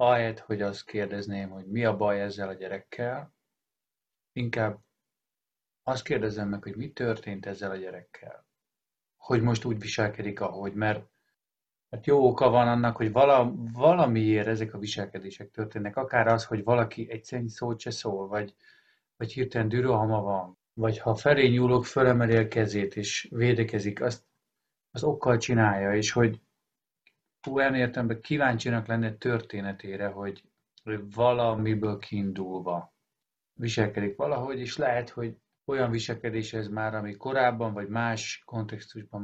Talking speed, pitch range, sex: 135 wpm, 105-120 Hz, male